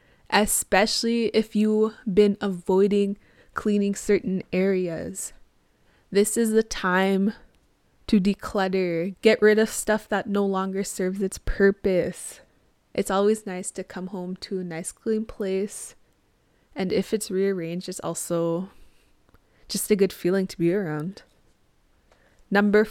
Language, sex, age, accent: English, female, 20-39, American